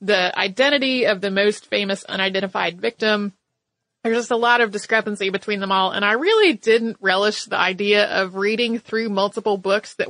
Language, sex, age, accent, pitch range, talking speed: English, female, 30-49, American, 200-245 Hz, 180 wpm